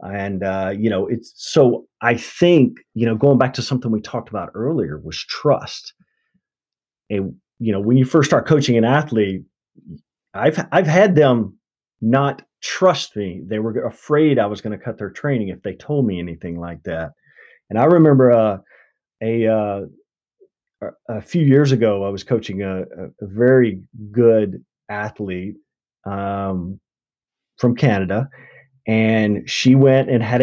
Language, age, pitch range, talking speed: English, 30-49, 100-140 Hz, 160 wpm